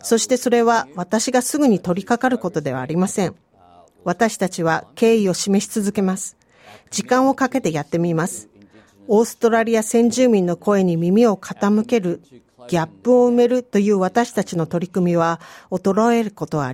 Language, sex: Japanese, female